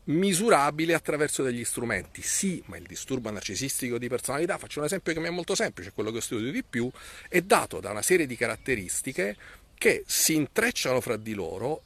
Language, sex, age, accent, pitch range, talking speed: Italian, male, 40-59, native, 110-175 Hz, 185 wpm